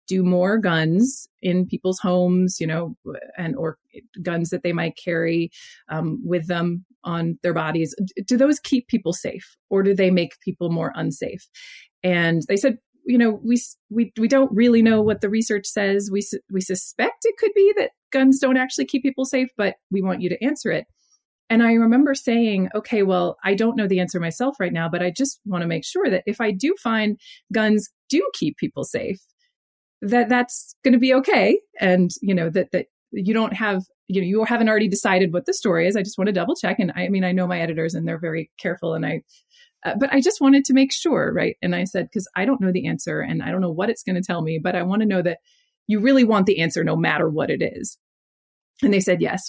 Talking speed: 230 wpm